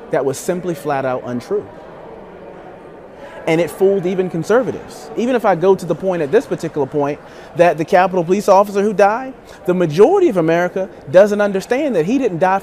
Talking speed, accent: 185 wpm, American